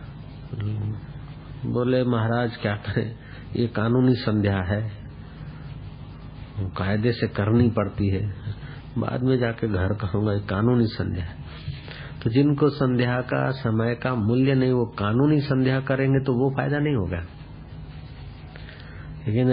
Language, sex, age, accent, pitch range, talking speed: Hindi, male, 50-69, native, 105-135 Hz, 125 wpm